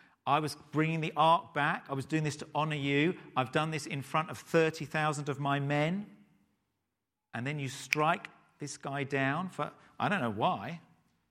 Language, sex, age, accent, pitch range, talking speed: English, male, 50-69, British, 105-140 Hz, 185 wpm